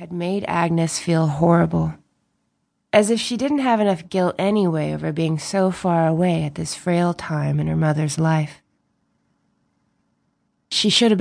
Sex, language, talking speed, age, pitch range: female, English, 155 wpm, 30-49, 150-185 Hz